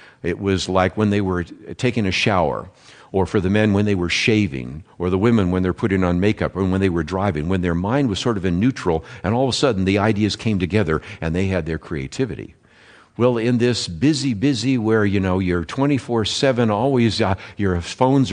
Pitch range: 90-115 Hz